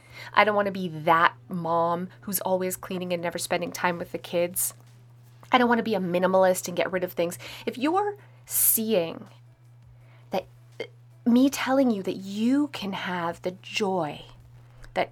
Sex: female